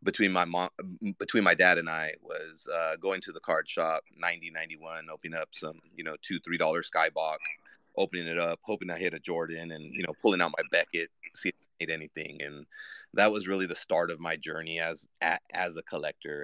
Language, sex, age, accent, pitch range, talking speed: English, male, 30-49, American, 75-85 Hz, 220 wpm